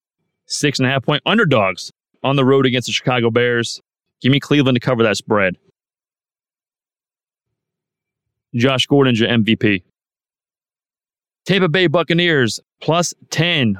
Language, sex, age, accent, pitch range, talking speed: English, male, 30-49, American, 115-145 Hz, 110 wpm